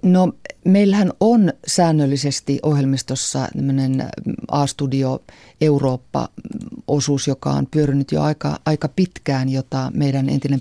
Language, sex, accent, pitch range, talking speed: Finnish, female, native, 130-150 Hz, 95 wpm